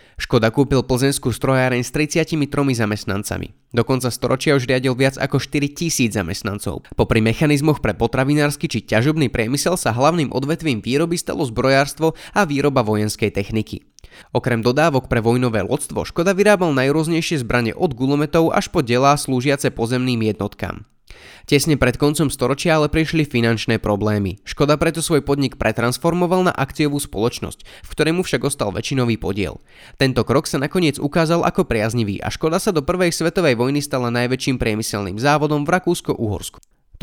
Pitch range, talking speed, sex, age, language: 115-155 Hz, 150 wpm, male, 20-39, Slovak